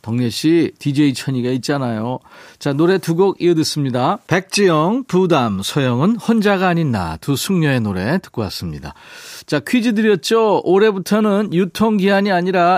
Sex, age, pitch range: male, 40-59, 130-190 Hz